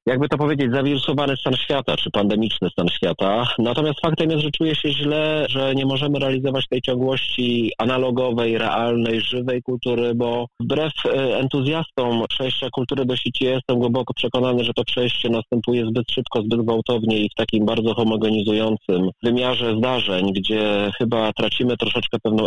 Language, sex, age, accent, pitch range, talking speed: Polish, male, 30-49, native, 110-130 Hz, 150 wpm